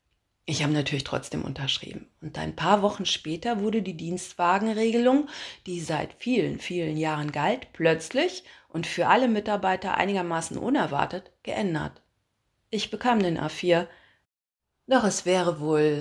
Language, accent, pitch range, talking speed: German, German, 165-235 Hz, 130 wpm